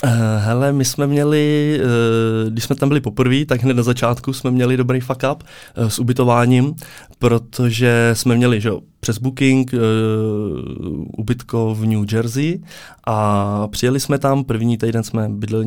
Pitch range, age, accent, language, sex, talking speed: 110-125 Hz, 20-39, native, Czech, male, 145 wpm